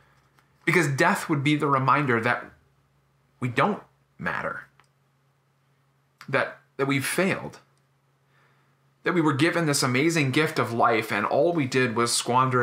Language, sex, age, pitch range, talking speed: English, male, 30-49, 135-140 Hz, 140 wpm